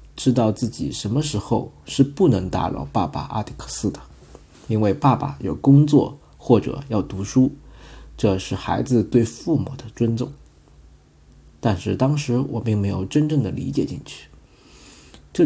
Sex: male